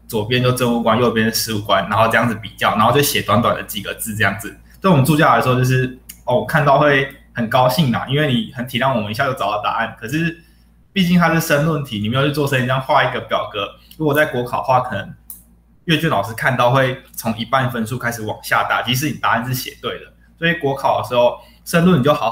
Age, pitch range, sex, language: 20-39, 110-140 Hz, male, Chinese